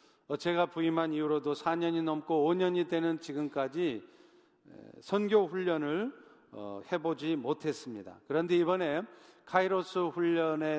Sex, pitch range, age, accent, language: male, 155-200 Hz, 40-59, native, Korean